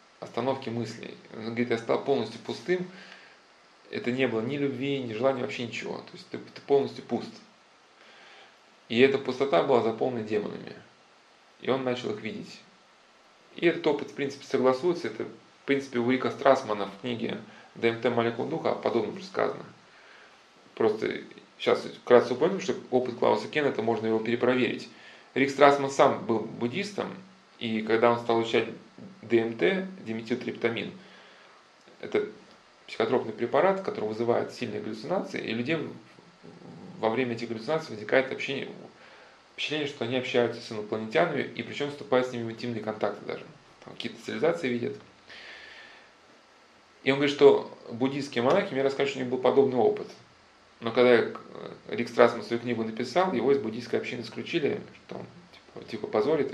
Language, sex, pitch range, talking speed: Russian, male, 115-140 Hz, 150 wpm